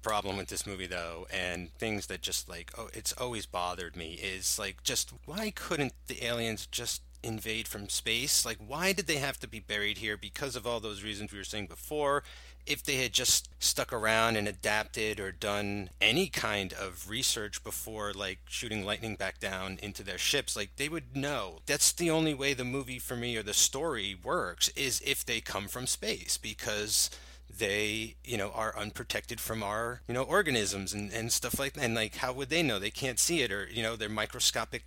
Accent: American